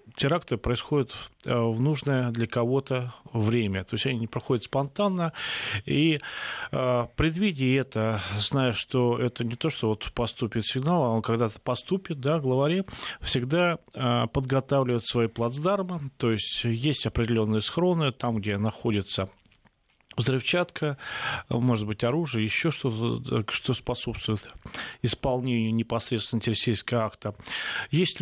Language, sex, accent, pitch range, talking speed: Russian, male, native, 110-140 Hz, 120 wpm